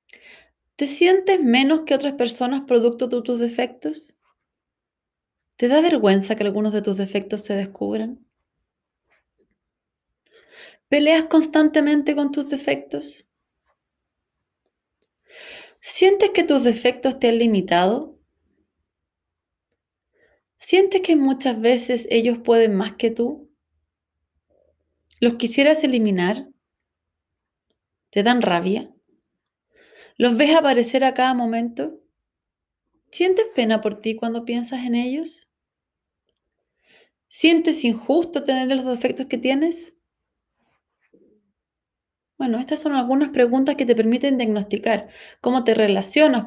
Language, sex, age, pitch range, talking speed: Spanish, female, 30-49, 220-290 Hz, 105 wpm